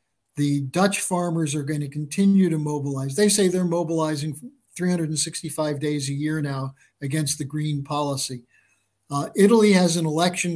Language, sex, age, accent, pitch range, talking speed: English, male, 50-69, American, 145-175 Hz, 155 wpm